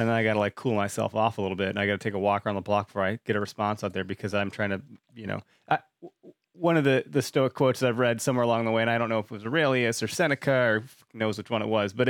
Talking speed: 315 wpm